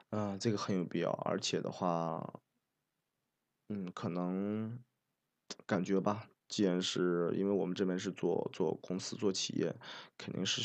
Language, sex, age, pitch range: Chinese, male, 20-39, 90-105 Hz